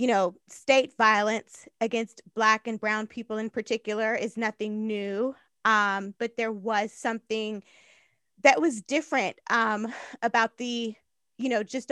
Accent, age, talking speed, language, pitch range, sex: American, 20-39, 140 wpm, English, 215-270 Hz, female